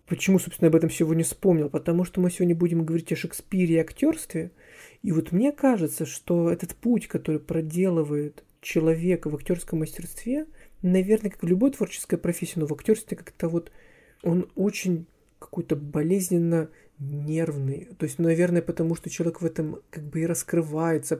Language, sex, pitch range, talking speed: Russian, male, 155-185 Hz, 165 wpm